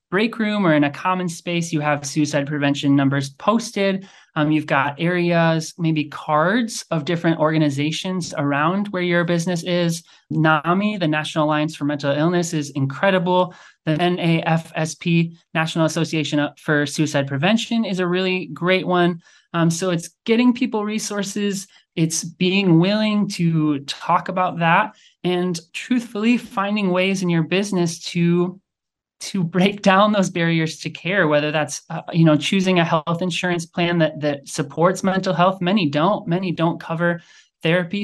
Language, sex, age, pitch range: English, male, 20-39, 155-185 Hz